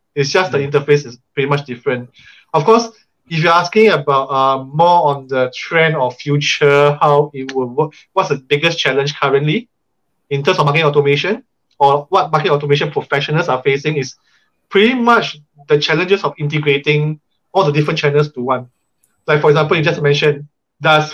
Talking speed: 175 wpm